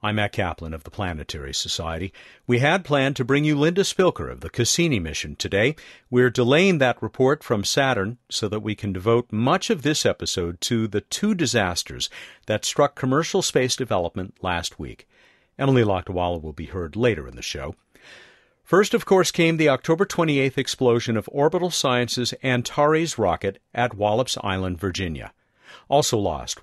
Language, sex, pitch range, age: English, male, 100-155 Hz, 50-69